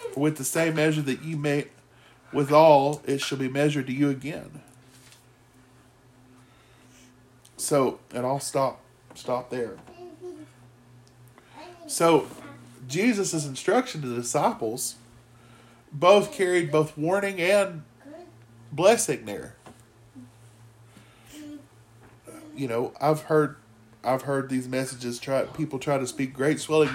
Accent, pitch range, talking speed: American, 115-155 Hz, 115 wpm